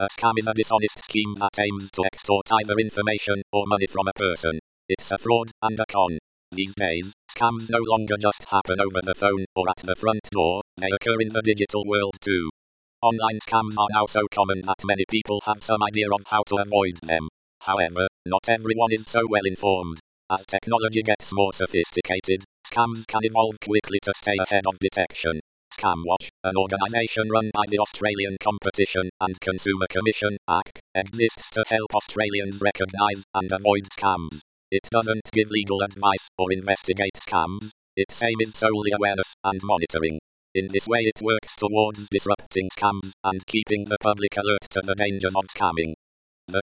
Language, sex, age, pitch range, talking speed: English, male, 50-69, 95-110 Hz, 175 wpm